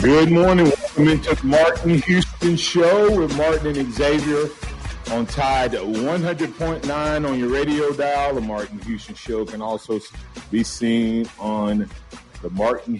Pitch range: 110-150 Hz